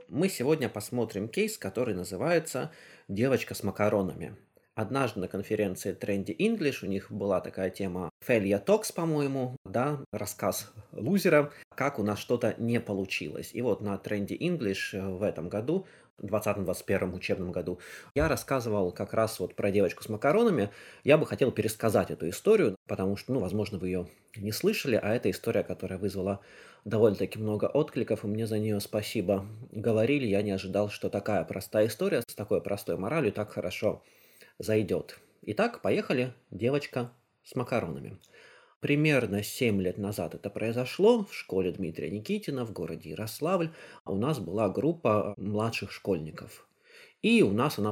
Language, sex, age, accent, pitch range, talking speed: Russian, male, 20-39, native, 95-120 Hz, 150 wpm